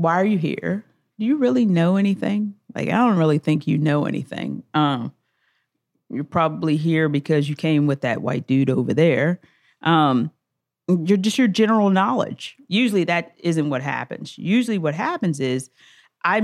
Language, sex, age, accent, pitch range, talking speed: English, female, 40-59, American, 160-205 Hz, 170 wpm